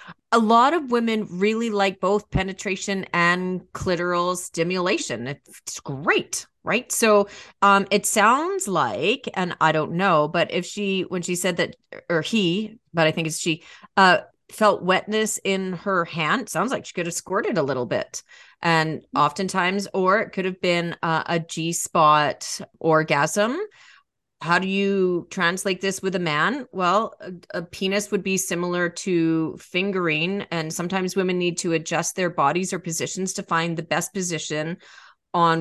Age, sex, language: 30-49, female, English